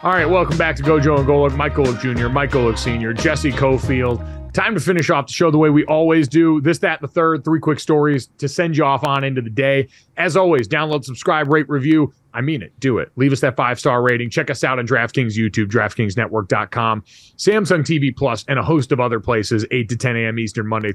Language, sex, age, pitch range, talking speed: English, male, 30-49, 125-165 Hz, 225 wpm